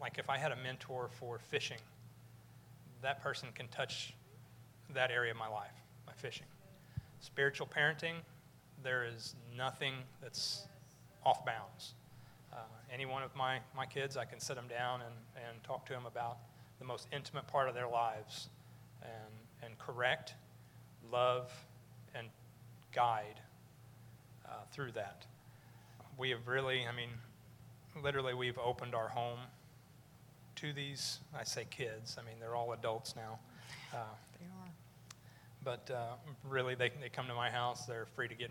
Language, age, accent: English, 40-59, American